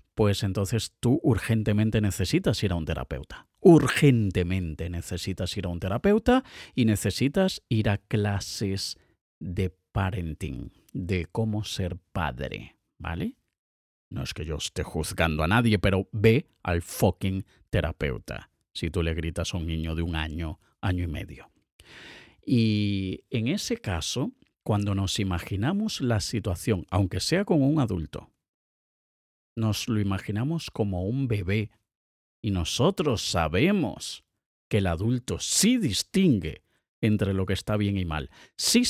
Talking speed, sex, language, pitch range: 135 wpm, male, Spanish, 90-115 Hz